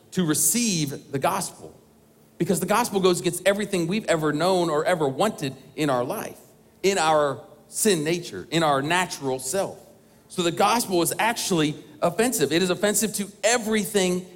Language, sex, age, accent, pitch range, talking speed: English, male, 40-59, American, 160-200 Hz, 160 wpm